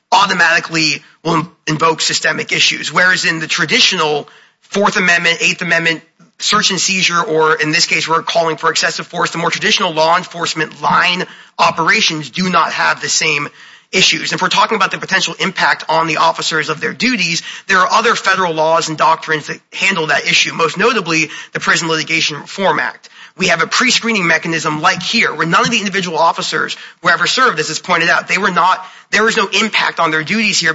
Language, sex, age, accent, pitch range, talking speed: English, male, 30-49, American, 155-185 Hz, 200 wpm